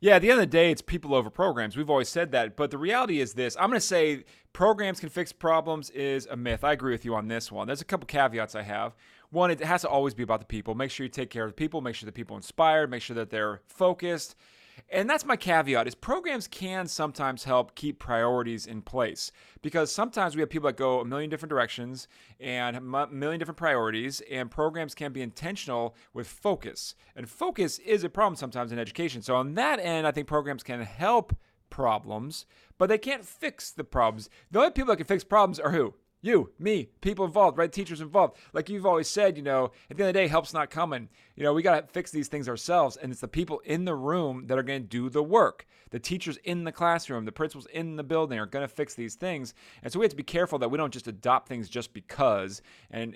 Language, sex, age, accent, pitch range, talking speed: English, male, 30-49, American, 120-165 Hz, 240 wpm